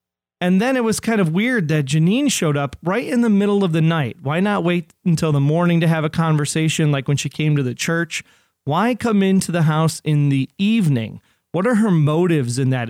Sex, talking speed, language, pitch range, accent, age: male, 230 wpm, English, 140-175 Hz, American, 30-49